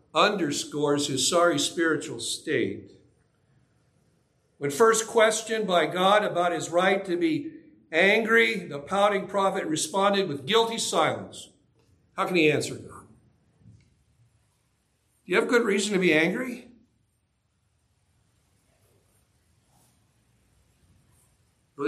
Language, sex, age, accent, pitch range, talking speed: English, male, 60-79, American, 120-195 Hz, 100 wpm